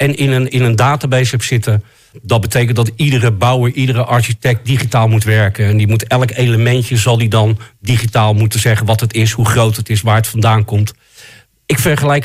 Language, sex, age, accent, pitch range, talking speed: Dutch, male, 40-59, Dutch, 115-145 Hz, 205 wpm